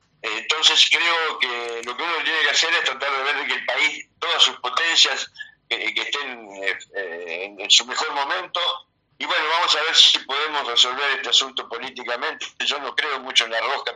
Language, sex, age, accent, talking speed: Spanish, male, 60-79, Argentinian, 200 wpm